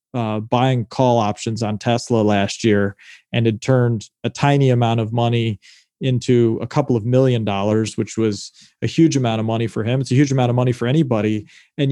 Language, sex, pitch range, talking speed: English, male, 115-140 Hz, 200 wpm